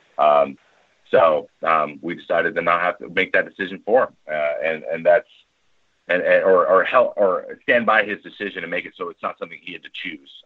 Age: 30-49